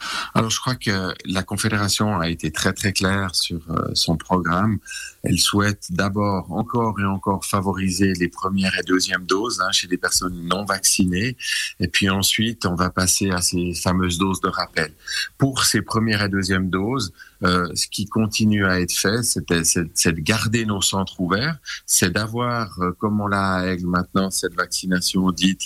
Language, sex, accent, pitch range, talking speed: French, male, French, 95-110 Hz, 180 wpm